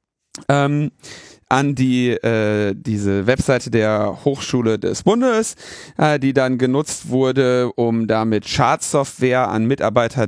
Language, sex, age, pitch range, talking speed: German, male, 40-59, 110-145 Hz, 115 wpm